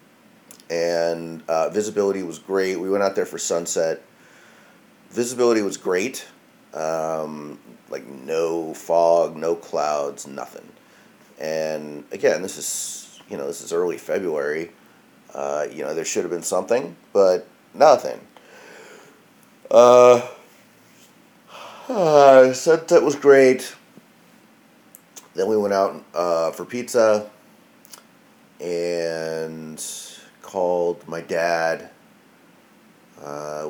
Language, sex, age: English, male, 30-49